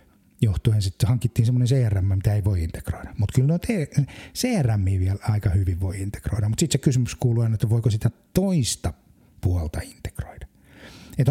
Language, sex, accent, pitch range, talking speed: Finnish, male, native, 95-135 Hz, 160 wpm